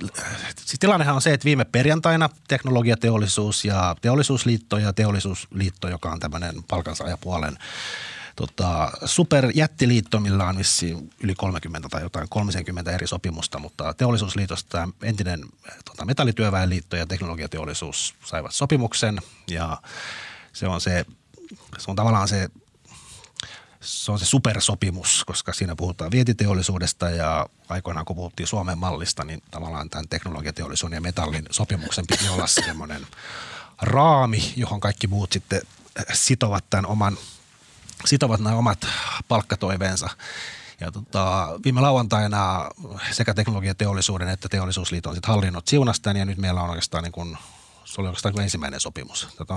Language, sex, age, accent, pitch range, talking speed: Finnish, male, 30-49, native, 85-110 Hz, 125 wpm